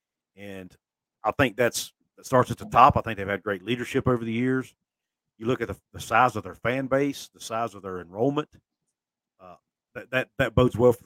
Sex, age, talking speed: male, 50-69, 215 wpm